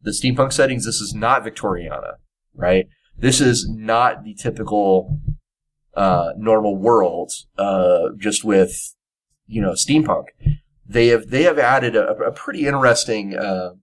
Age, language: 30-49, English